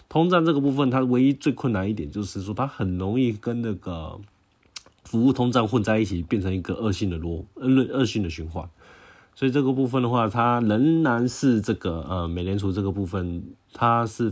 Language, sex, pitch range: Chinese, male, 90-120 Hz